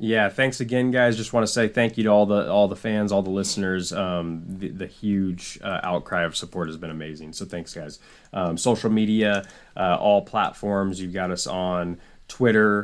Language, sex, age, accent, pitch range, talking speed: English, male, 20-39, American, 85-100 Hz, 205 wpm